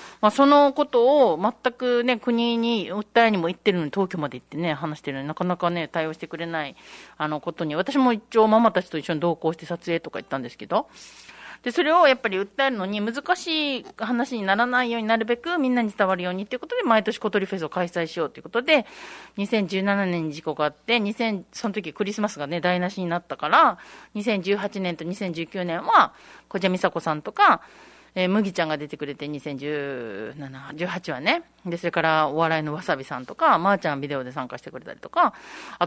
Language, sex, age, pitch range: Japanese, female, 40-59, 165-235 Hz